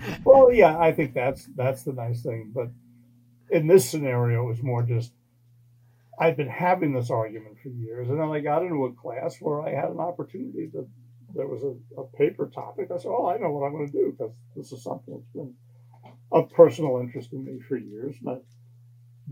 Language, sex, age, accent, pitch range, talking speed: English, male, 60-79, American, 120-135 Hz, 210 wpm